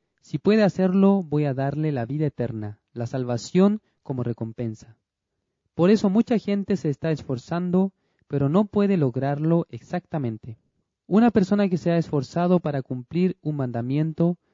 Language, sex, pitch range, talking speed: Spanish, male, 130-185 Hz, 145 wpm